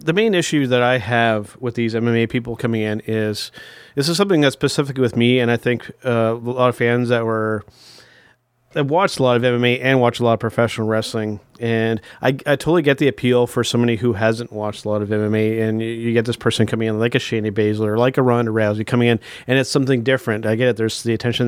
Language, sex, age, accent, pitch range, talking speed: English, male, 30-49, American, 115-130 Hz, 245 wpm